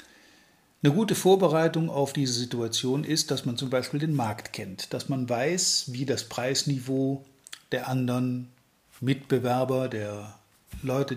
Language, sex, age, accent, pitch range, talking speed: German, male, 50-69, German, 125-155 Hz, 135 wpm